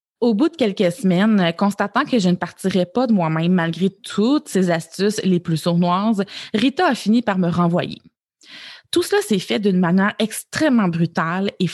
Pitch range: 175-220 Hz